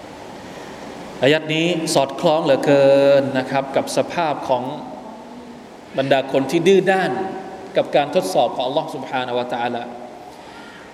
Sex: male